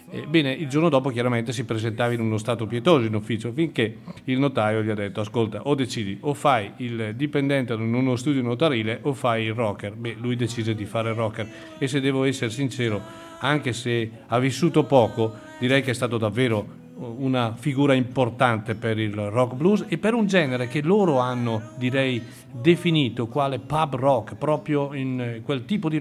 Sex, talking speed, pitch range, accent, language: male, 185 wpm, 120-145 Hz, native, Italian